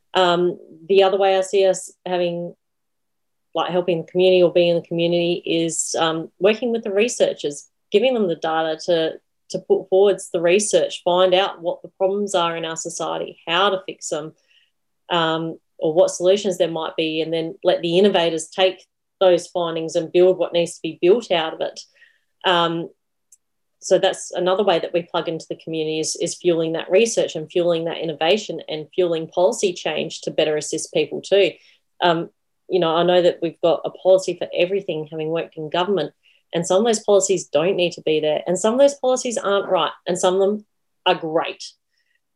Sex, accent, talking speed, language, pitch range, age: female, Australian, 195 wpm, English, 165-195 Hz, 30-49